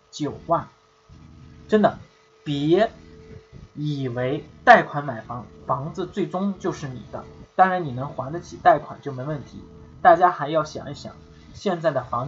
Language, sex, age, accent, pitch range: Chinese, male, 20-39, native, 125-175 Hz